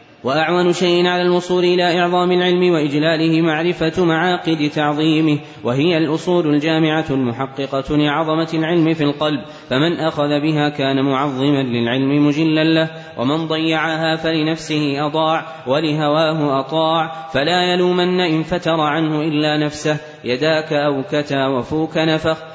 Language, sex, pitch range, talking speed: Arabic, male, 145-160 Hz, 115 wpm